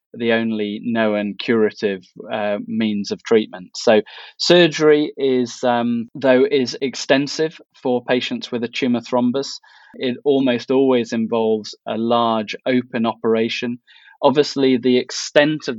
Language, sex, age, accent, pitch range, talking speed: English, male, 20-39, British, 115-130 Hz, 125 wpm